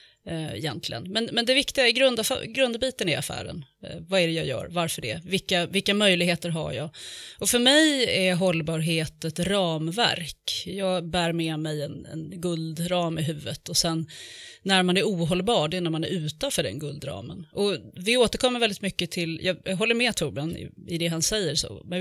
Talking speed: 185 wpm